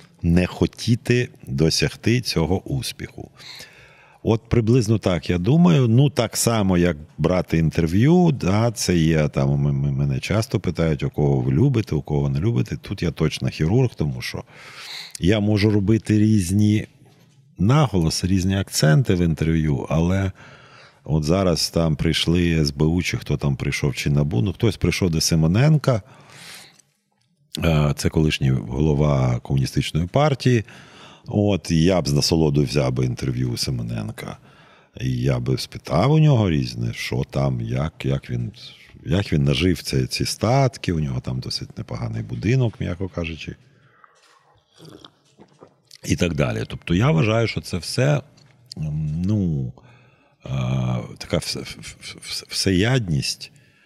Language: Ukrainian